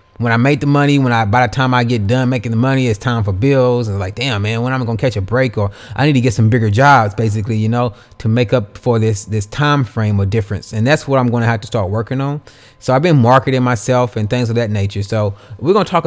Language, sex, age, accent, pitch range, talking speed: English, male, 20-39, American, 110-135 Hz, 290 wpm